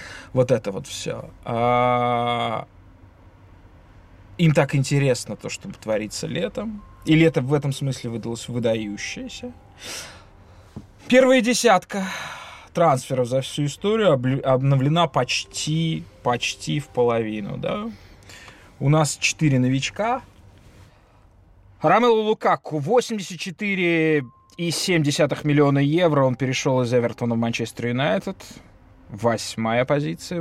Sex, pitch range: male, 100-145 Hz